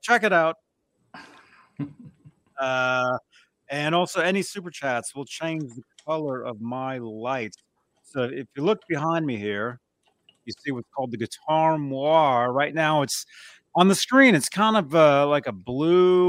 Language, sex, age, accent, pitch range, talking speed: English, male, 30-49, American, 125-160 Hz, 160 wpm